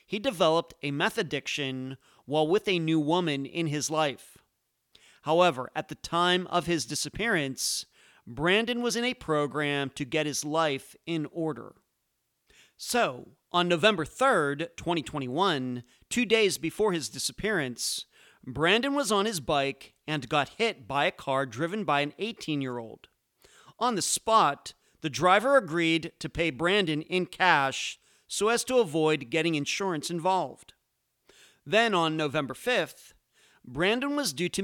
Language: English